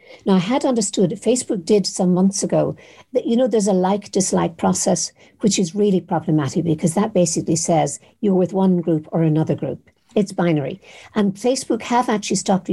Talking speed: 185 wpm